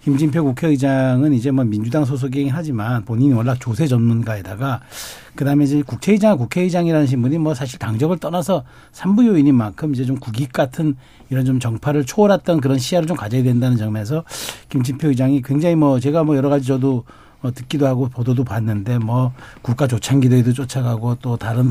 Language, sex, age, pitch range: Korean, male, 60-79, 125-160 Hz